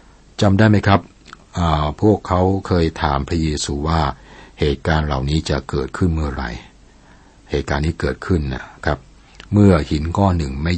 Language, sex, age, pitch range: Thai, male, 60-79, 70-85 Hz